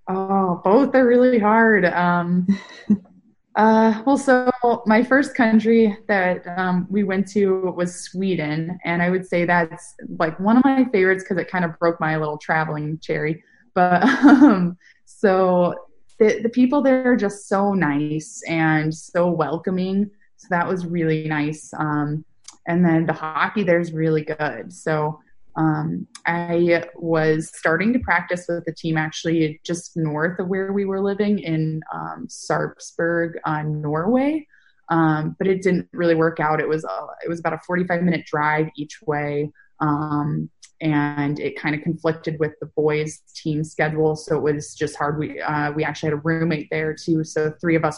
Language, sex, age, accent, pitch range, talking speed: English, female, 20-39, American, 155-195 Hz, 170 wpm